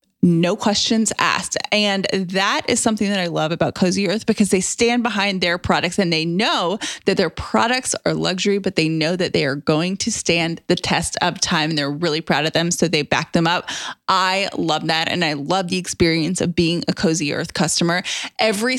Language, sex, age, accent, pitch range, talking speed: English, female, 20-39, American, 170-225 Hz, 210 wpm